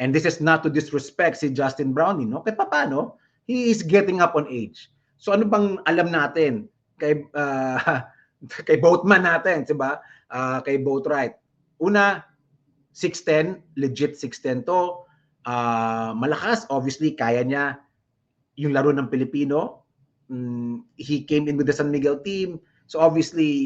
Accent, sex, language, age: Filipino, male, English, 20-39